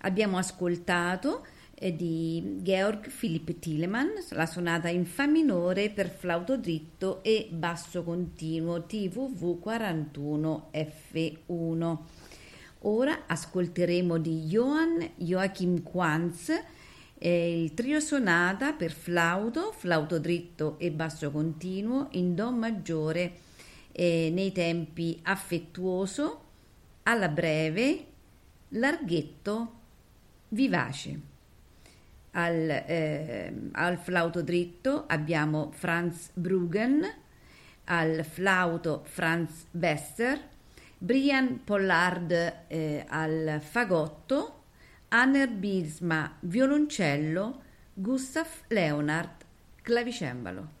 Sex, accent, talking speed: female, native, 80 wpm